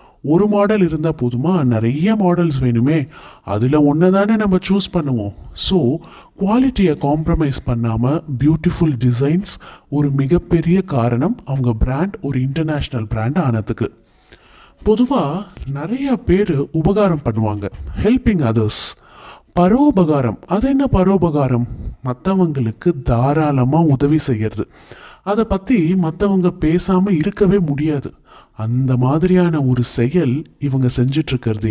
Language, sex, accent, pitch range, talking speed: Tamil, male, native, 125-175 Hz, 95 wpm